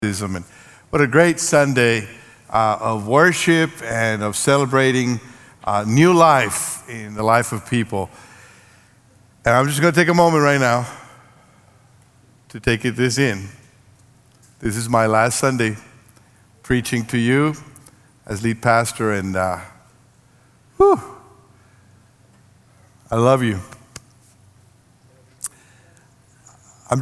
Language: English